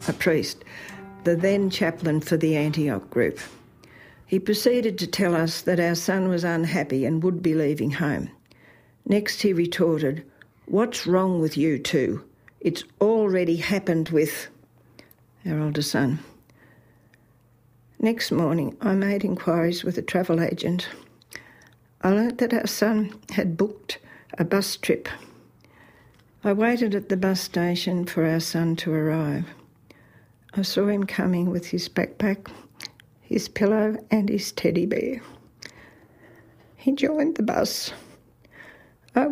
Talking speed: 135 wpm